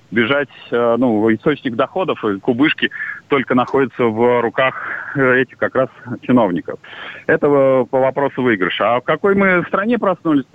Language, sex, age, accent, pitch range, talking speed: Russian, male, 30-49, native, 130-155 Hz, 135 wpm